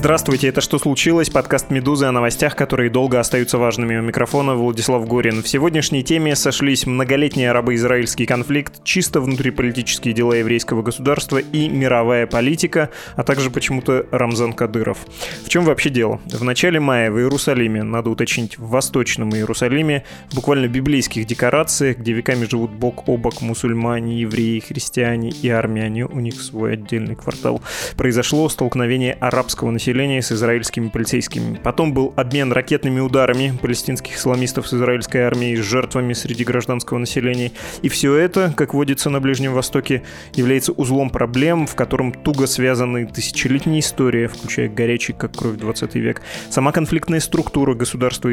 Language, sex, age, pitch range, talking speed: Russian, male, 20-39, 115-140 Hz, 150 wpm